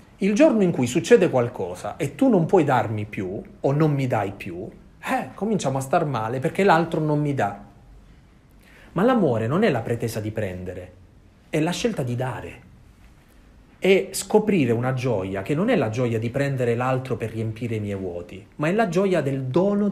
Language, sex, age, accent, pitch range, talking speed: Italian, male, 40-59, native, 100-155 Hz, 190 wpm